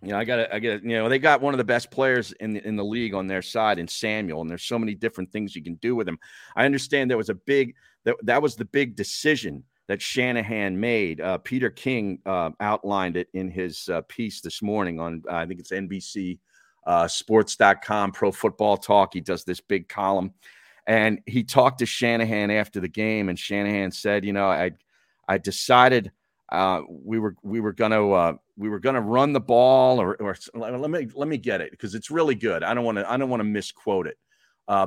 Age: 40-59